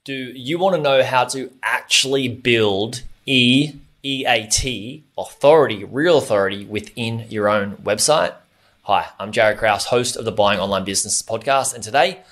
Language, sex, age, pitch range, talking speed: English, male, 20-39, 110-130 Hz, 150 wpm